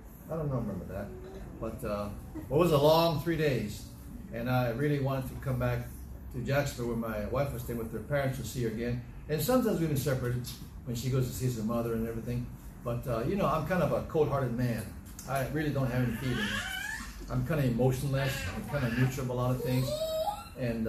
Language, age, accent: English, 60-79, American